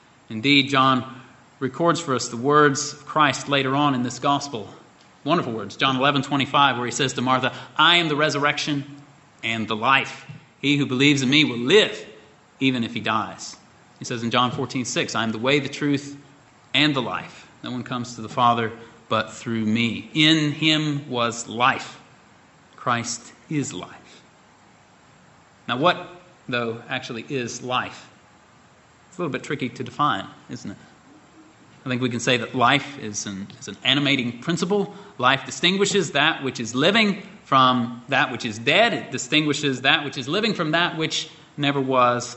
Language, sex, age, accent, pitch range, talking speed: English, male, 30-49, American, 120-145 Hz, 175 wpm